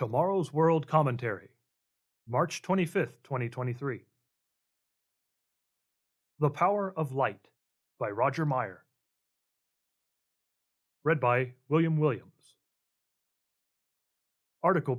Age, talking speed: 30-49, 70 wpm